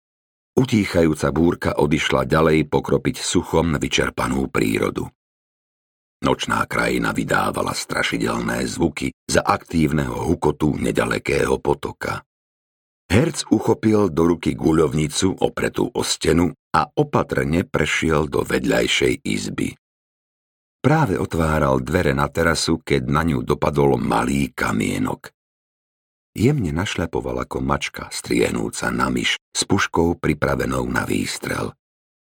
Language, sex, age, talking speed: Slovak, male, 50-69, 100 wpm